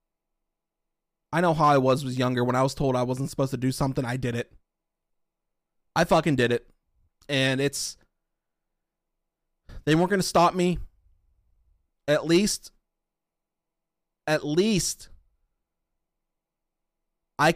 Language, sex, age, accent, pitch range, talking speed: English, male, 30-49, American, 120-165 Hz, 125 wpm